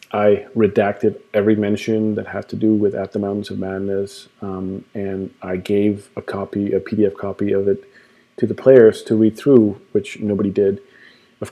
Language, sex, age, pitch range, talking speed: English, male, 40-59, 100-115 Hz, 180 wpm